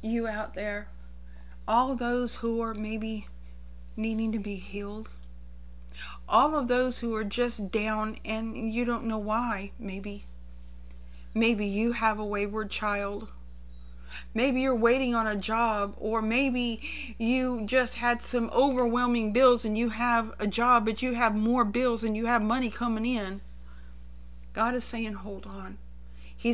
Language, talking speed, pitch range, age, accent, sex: English, 150 wpm, 205-240 Hz, 40-59, American, female